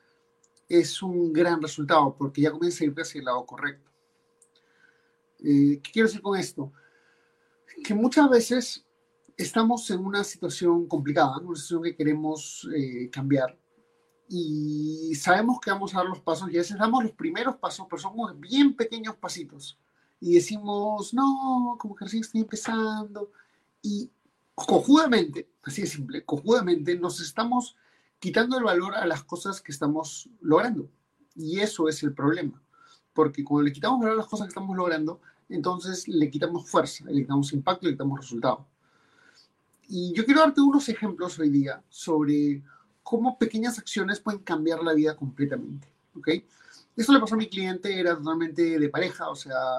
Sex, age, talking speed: male, 40-59, 165 wpm